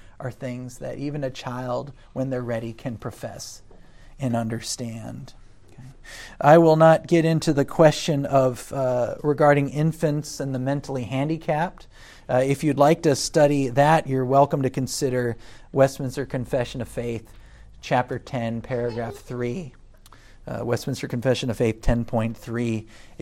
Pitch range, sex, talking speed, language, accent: 115-145 Hz, male, 140 wpm, English, American